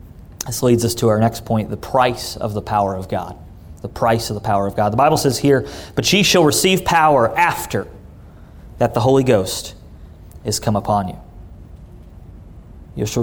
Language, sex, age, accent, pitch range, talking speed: English, male, 30-49, American, 115-155 Hz, 185 wpm